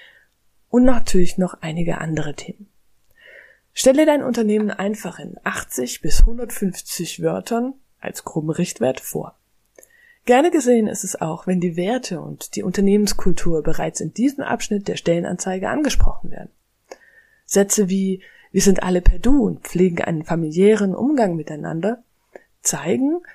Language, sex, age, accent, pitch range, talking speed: German, female, 20-39, German, 175-240 Hz, 135 wpm